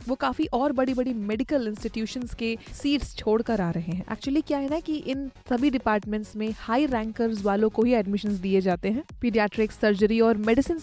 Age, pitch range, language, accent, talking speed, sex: 20-39, 220-265 Hz, Hindi, native, 195 wpm, female